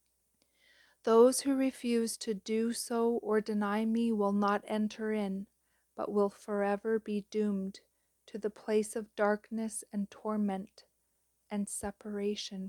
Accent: American